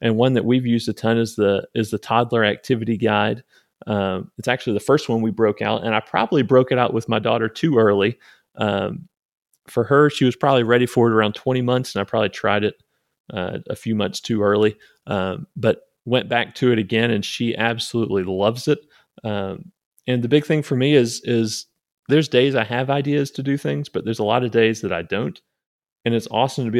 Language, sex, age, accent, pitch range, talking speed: English, male, 30-49, American, 110-130 Hz, 225 wpm